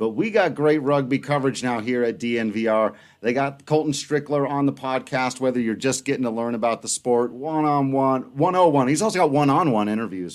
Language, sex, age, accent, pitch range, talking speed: English, male, 40-59, American, 115-145 Hz, 190 wpm